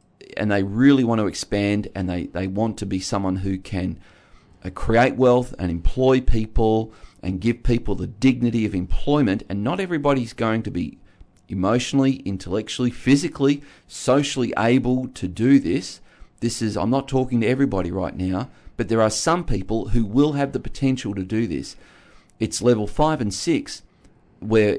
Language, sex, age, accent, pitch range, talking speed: English, male, 40-59, Australian, 95-130 Hz, 165 wpm